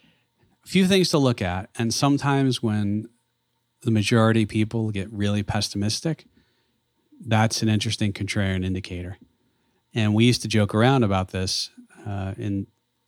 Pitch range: 95-115 Hz